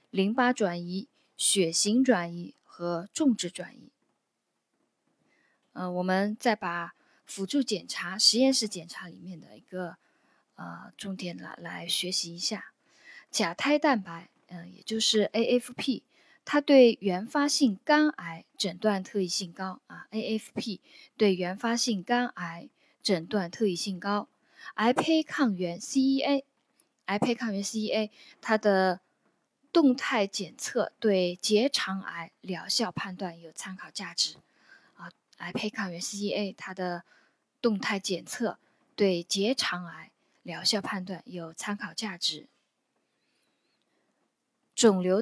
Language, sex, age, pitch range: Chinese, female, 20-39, 185-245 Hz